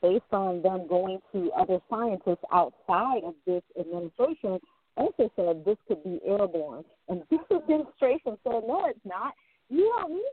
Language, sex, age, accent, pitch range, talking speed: English, female, 40-59, American, 190-255 Hz, 155 wpm